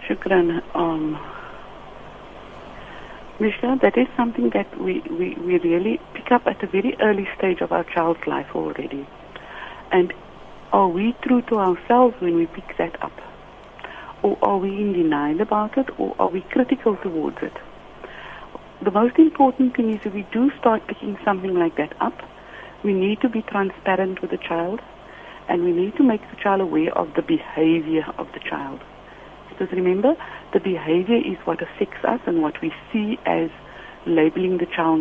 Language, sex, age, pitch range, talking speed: English, female, 70-89, 175-240 Hz, 170 wpm